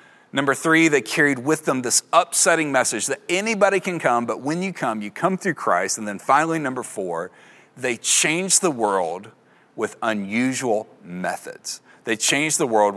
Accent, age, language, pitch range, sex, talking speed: American, 30-49, English, 115-145 Hz, male, 170 wpm